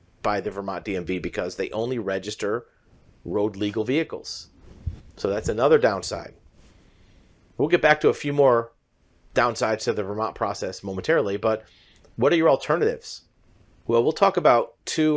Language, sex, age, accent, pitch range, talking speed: English, male, 40-59, American, 105-135 Hz, 150 wpm